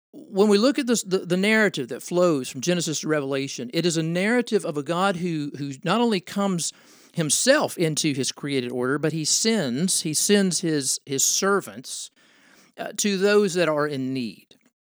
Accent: American